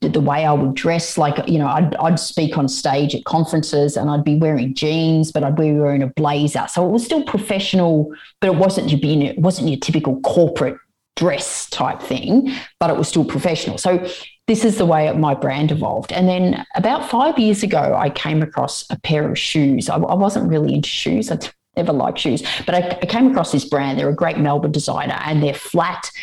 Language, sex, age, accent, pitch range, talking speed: English, female, 30-49, Australian, 150-195 Hz, 215 wpm